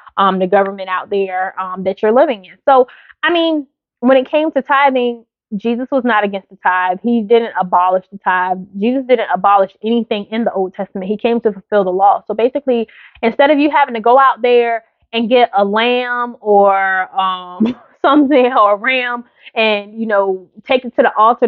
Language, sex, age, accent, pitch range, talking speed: English, female, 20-39, American, 205-250 Hz, 200 wpm